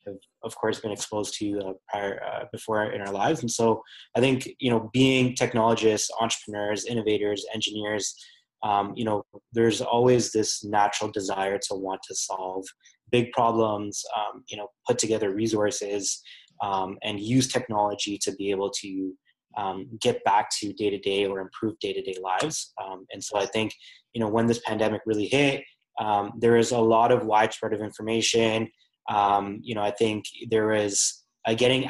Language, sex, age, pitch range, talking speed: English, male, 20-39, 105-115 Hz, 170 wpm